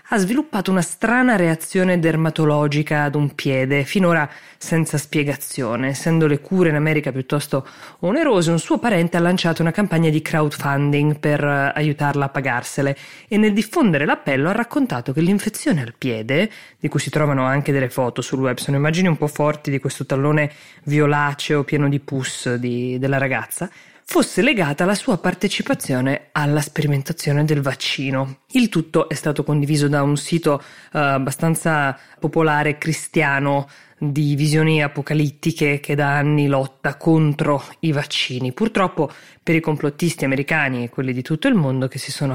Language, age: Italian, 20-39